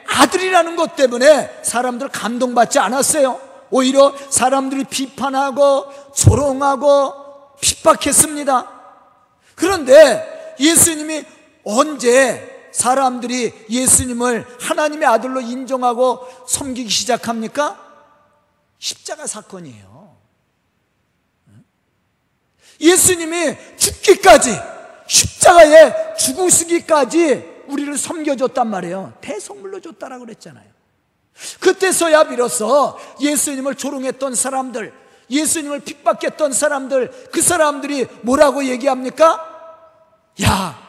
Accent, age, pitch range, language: native, 40-59, 235-305 Hz, Korean